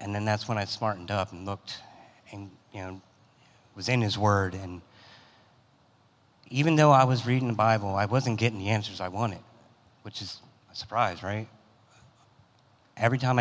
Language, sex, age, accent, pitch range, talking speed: English, male, 30-49, American, 105-125 Hz, 170 wpm